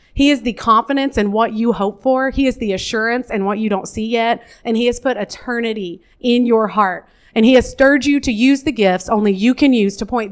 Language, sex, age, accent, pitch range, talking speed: English, female, 30-49, American, 195-255 Hz, 245 wpm